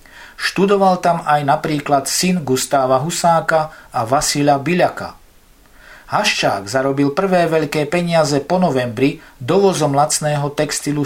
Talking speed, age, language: 110 wpm, 50-69, Slovak